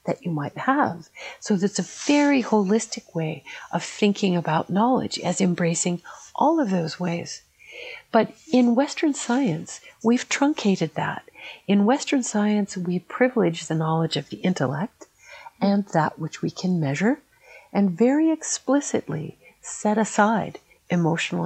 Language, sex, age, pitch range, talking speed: English, female, 60-79, 170-245 Hz, 135 wpm